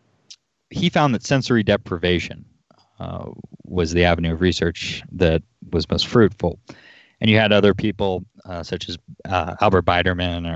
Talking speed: 150 wpm